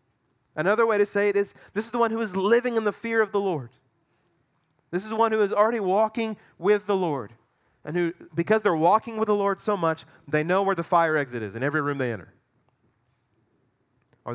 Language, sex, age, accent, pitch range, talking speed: English, male, 30-49, American, 125-160 Hz, 220 wpm